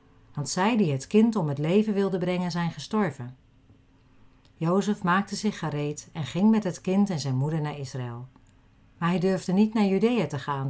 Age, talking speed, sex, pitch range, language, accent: 40-59, 190 wpm, female, 130-190 Hz, Dutch, Dutch